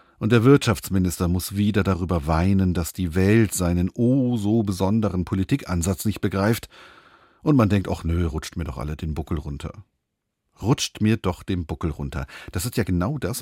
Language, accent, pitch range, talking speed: German, German, 85-110 Hz, 180 wpm